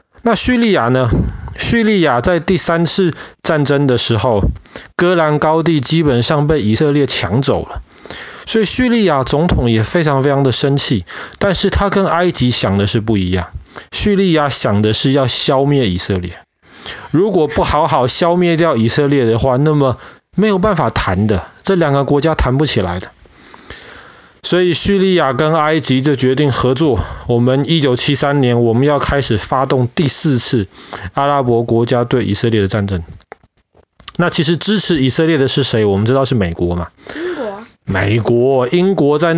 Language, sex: Chinese, male